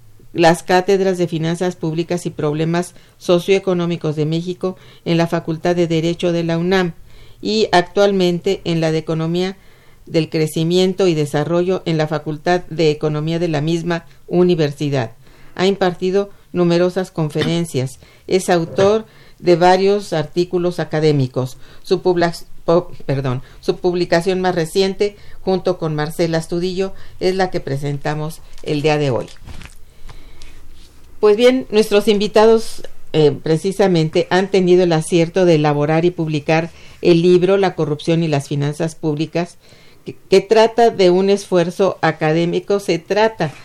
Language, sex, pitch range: Spanish, female, 150-185 Hz